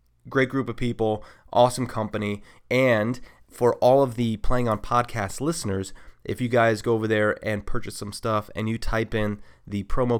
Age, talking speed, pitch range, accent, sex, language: 30-49, 180 wpm, 100-120 Hz, American, male, English